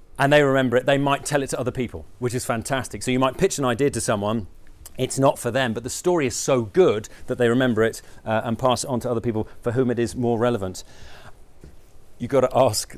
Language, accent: English, British